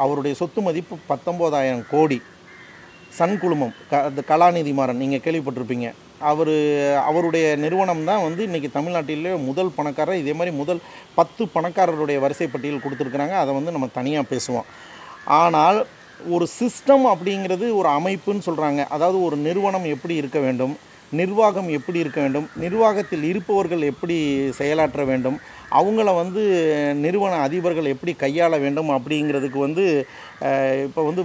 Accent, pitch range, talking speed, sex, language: native, 140-175 Hz, 125 wpm, male, Tamil